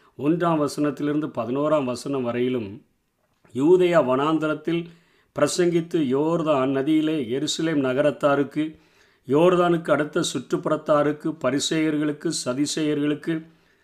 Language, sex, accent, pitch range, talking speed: Tamil, male, native, 140-165 Hz, 80 wpm